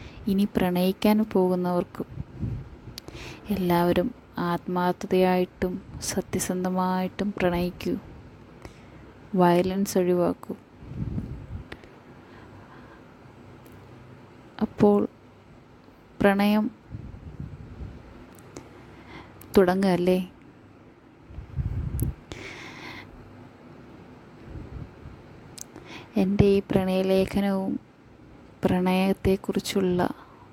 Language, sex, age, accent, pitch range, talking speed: Malayalam, female, 20-39, native, 180-200 Hz, 35 wpm